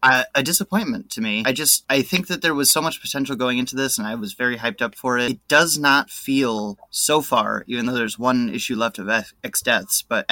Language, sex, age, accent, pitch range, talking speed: English, male, 30-49, American, 120-140 Hz, 250 wpm